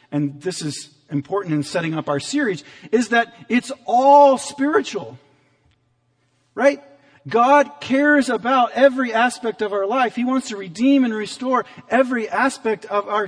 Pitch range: 140-205 Hz